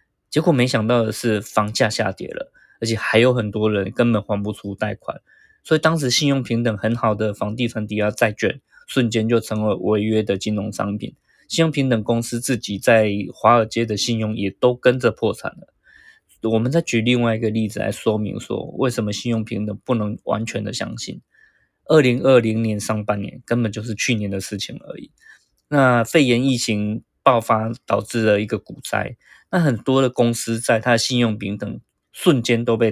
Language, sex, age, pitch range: Chinese, male, 20-39, 105-120 Hz